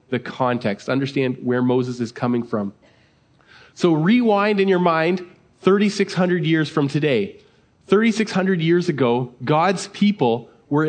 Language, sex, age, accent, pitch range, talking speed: English, male, 30-49, American, 135-175 Hz, 125 wpm